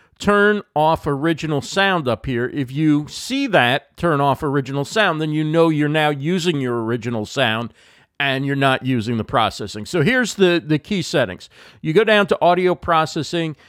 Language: English